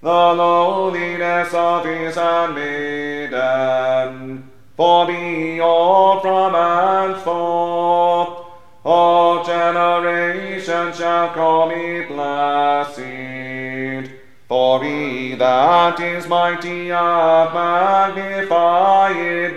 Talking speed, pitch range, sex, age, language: 70 wpm, 145-175 Hz, male, 30-49, English